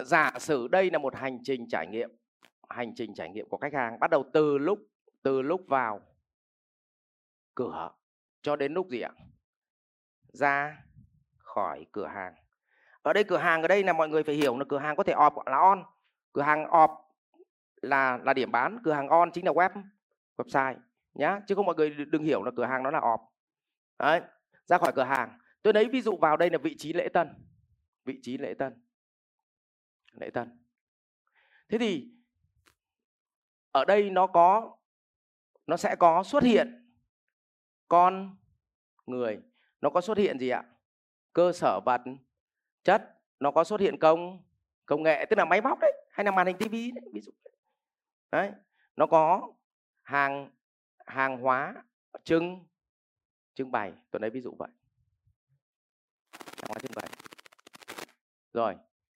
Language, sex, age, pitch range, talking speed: Vietnamese, male, 30-49, 135-195 Hz, 165 wpm